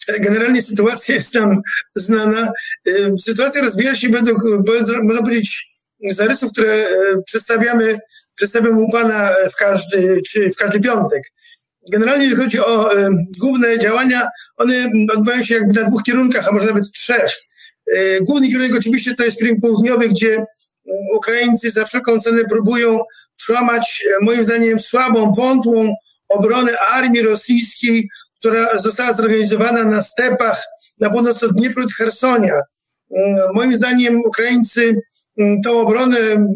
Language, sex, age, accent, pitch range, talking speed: Polish, male, 50-69, native, 220-240 Hz, 120 wpm